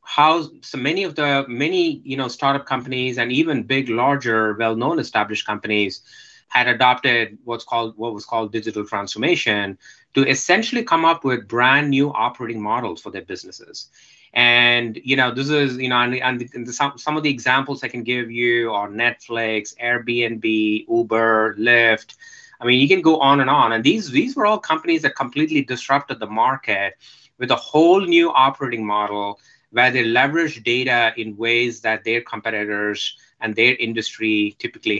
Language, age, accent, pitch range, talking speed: English, 20-39, Indian, 115-145 Hz, 170 wpm